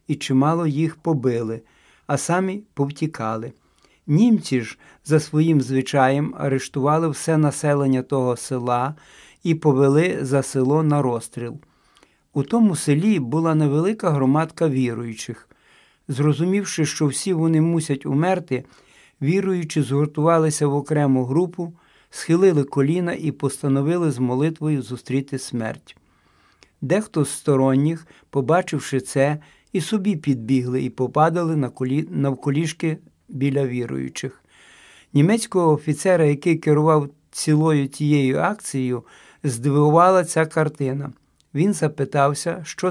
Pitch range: 135-165 Hz